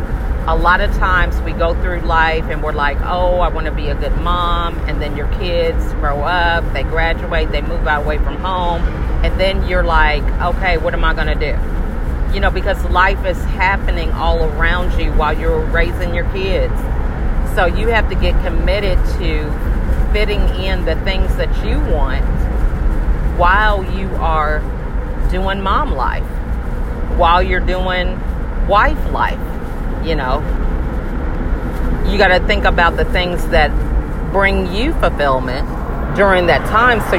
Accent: American